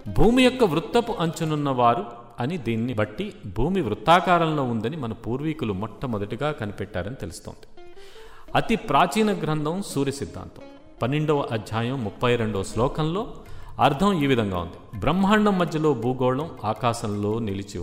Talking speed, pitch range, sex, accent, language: 110 wpm, 110-160 Hz, male, native, Telugu